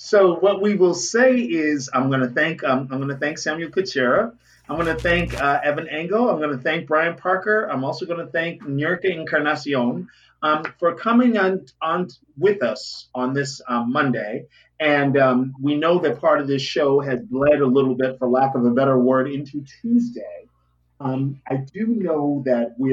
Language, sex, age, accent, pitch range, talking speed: English, male, 40-59, American, 130-180 Hz, 200 wpm